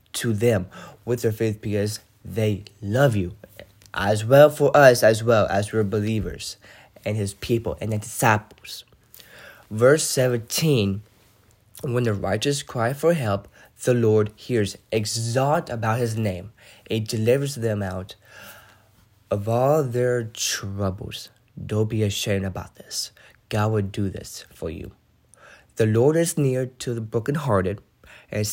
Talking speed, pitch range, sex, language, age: 140 wpm, 105-125 Hz, male, English, 20-39